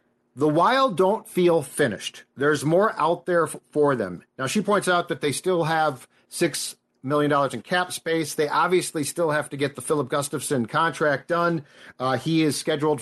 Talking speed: 180 wpm